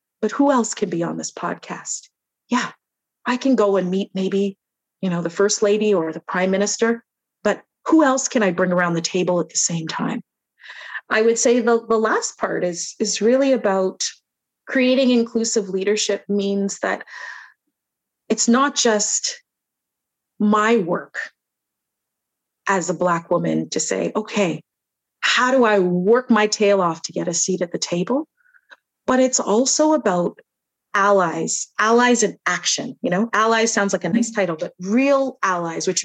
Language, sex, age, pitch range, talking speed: English, female, 30-49, 190-235 Hz, 165 wpm